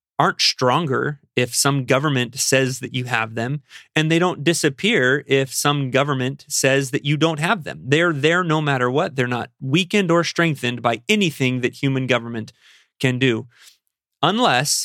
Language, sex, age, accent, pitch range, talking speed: English, male, 30-49, American, 125-155 Hz, 165 wpm